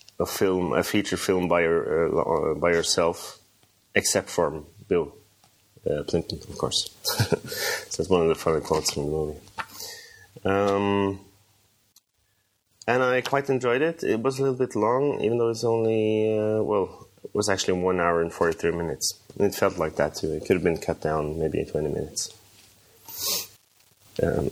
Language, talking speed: English, 170 wpm